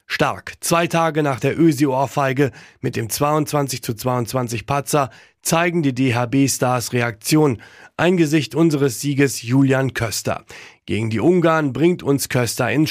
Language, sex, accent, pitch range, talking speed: German, male, German, 125-150 Hz, 130 wpm